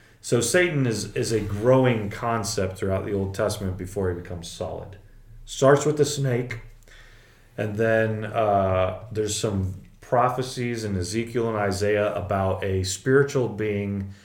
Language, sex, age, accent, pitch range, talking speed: English, male, 30-49, American, 100-115 Hz, 140 wpm